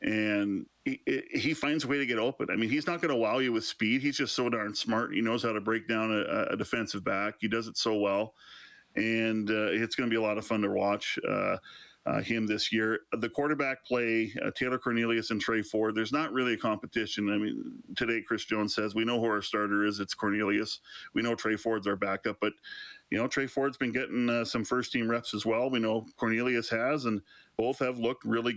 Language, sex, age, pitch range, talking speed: English, male, 40-59, 110-120 Hz, 235 wpm